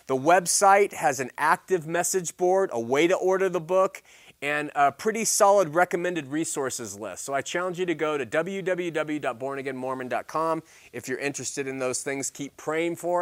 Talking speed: 170 wpm